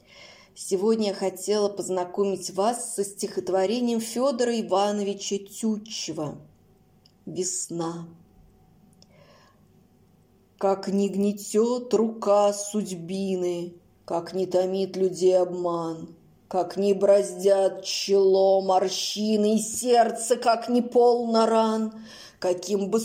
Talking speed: 90 wpm